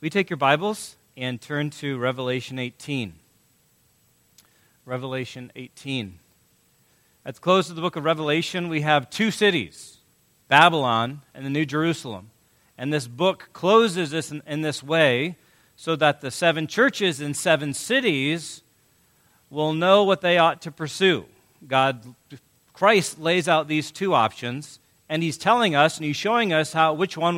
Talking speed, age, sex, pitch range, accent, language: 150 wpm, 40-59, male, 125-170 Hz, American, English